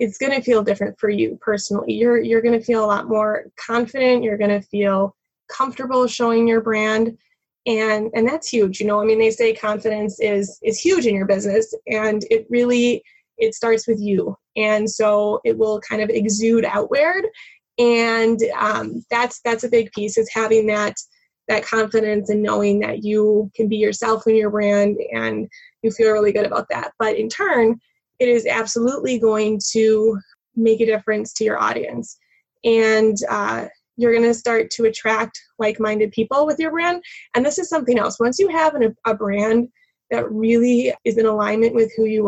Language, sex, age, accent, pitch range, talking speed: English, female, 20-39, American, 215-235 Hz, 185 wpm